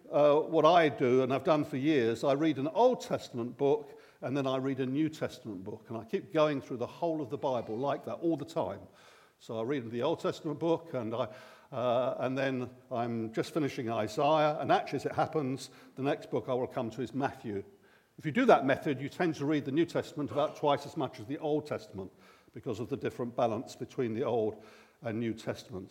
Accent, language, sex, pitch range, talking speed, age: British, English, male, 130-170 Hz, 230 wpm, 50-69